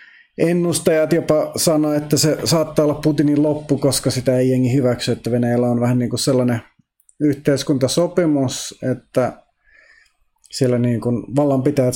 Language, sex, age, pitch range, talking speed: Finnish, male, 30-49, 120-145 Hz, 140 wpm